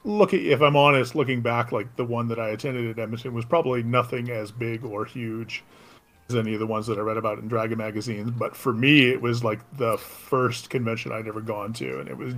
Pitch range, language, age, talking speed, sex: 115-125 Hz, English, 40-59, 240 wpm, male